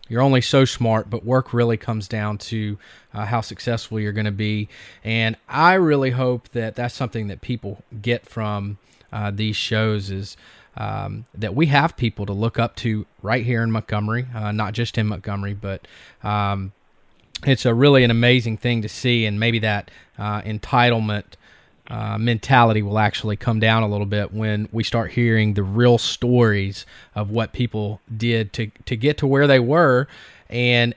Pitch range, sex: 105-120 Hz, male